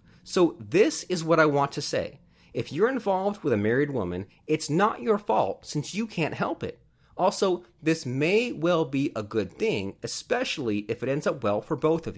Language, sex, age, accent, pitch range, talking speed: English, male, 30-49, American, 120-175 Hz, 200 wpm